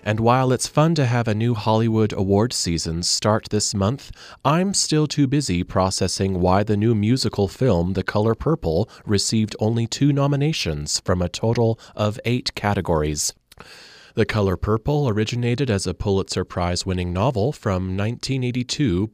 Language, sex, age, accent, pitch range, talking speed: English, male, 30-49, American, 90-120 Hz, 150 wpm